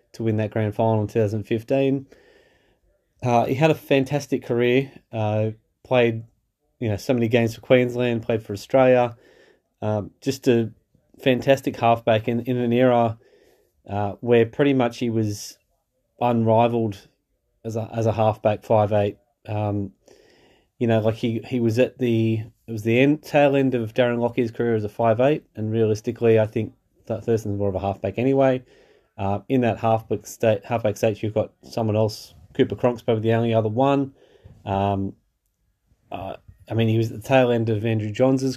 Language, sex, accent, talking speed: English, male, Australian, 170 wpm